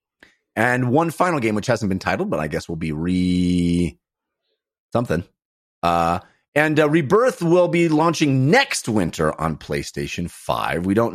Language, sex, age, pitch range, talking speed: English, male, 30-49, 95-140 Hz, 155 wpm